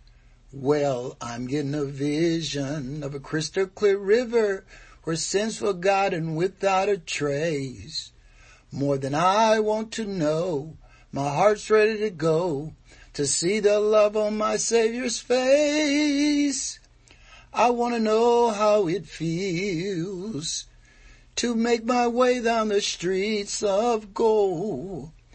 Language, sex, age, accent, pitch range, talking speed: English, male, 60-79, American, 145-220 Hz, 120 wpm